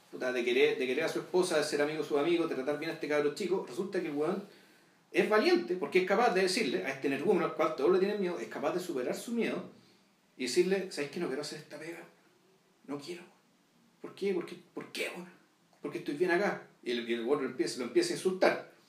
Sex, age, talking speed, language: male, 40-59, 245 wpm, Spanish